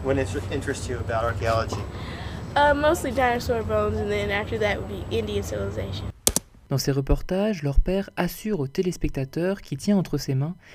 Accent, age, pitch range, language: French, 20-39, 135-185 Hz, French